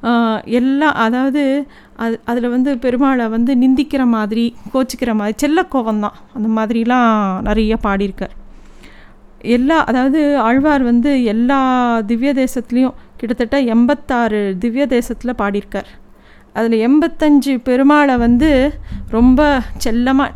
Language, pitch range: Tamil, 215-260 Hz